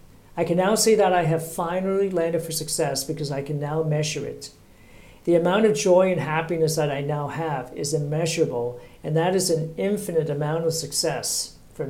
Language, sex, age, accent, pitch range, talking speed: English, male, 50-69, American, 140-170 Hz, 190 wpm